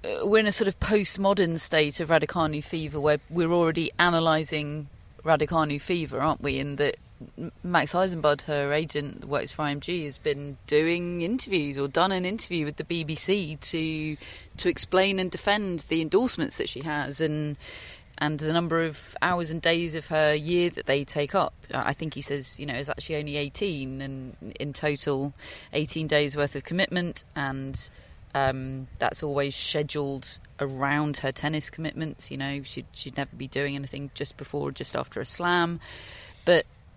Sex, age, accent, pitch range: female, 30-49, British, 140-165 Hz